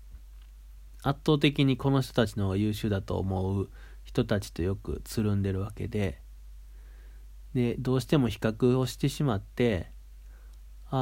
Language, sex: Japanese, male